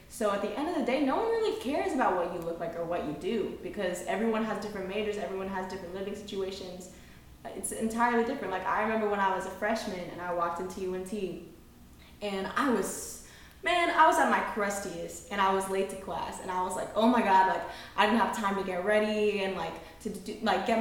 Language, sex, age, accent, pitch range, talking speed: English, female, 10-29, American, 185-225 Hz, 235 wpm